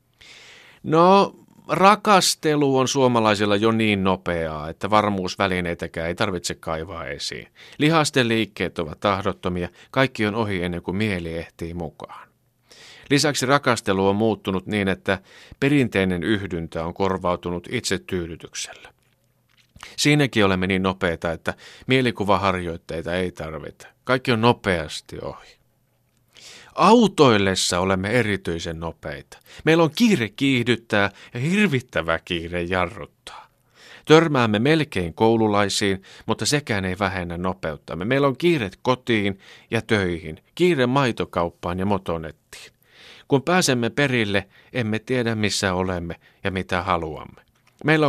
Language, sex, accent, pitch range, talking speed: Finnish, male, native, 90-130 Hz, 110 wpm